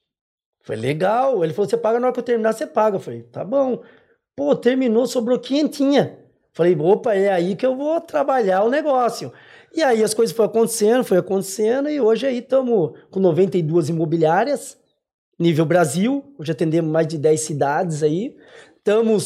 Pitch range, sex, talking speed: 175-235 Hz, male, 170 wpm